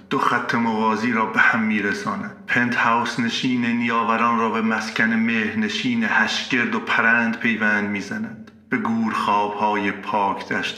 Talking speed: 155 wpm